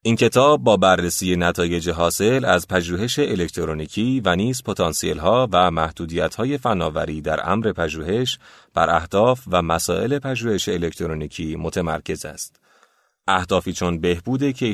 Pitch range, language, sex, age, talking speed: 85-115 Hz, Persian, male, 30-49, 120 wpm